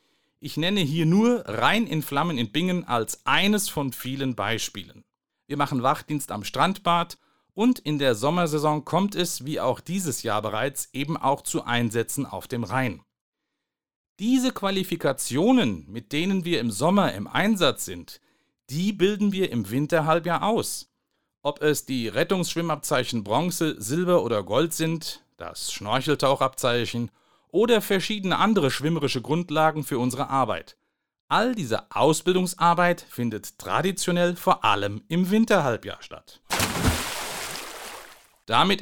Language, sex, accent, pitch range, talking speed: German, male, German, 120-175 Hz, 130 wpm